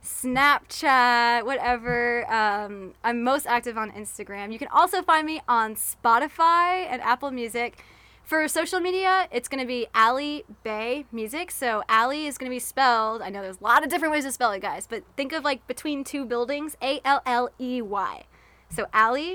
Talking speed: 175 wpm